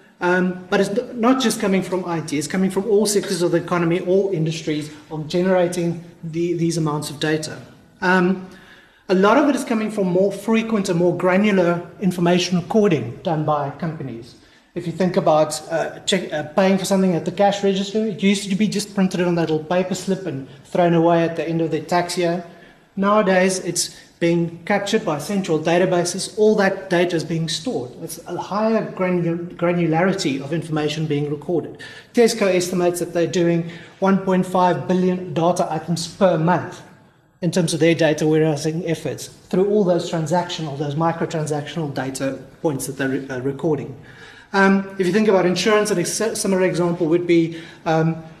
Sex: male